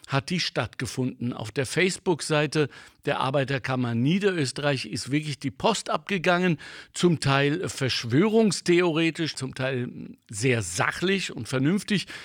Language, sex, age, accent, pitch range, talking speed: German, male, 60-79, German, 130-180 Hz, 115 wpm